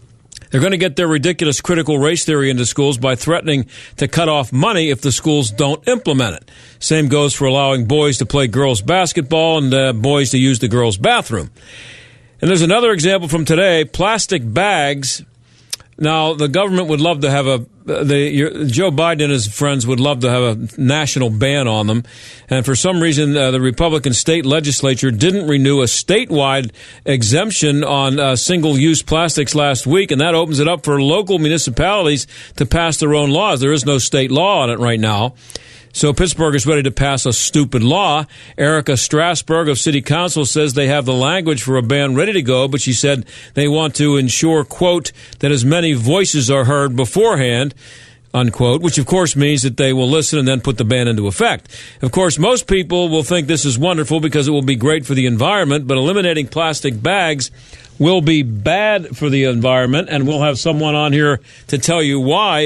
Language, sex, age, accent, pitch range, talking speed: English, male, 50-69, American, 130-160 Hz, 200 wpm